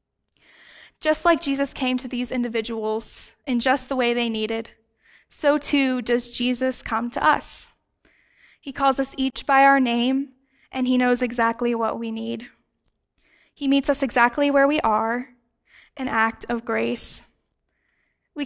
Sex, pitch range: female, 225-270 Hz